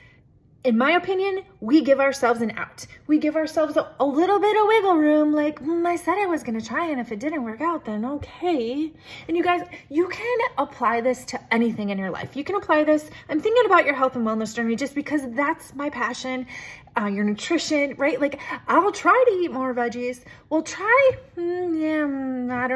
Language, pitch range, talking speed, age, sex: English, 215-315 Hz, 210 wpm, 30-49, female